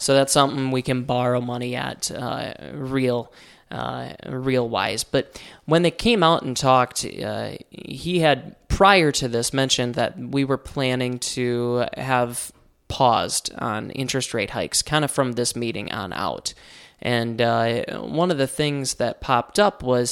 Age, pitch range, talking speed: 20-39, 120-140 Hz, 165 wpm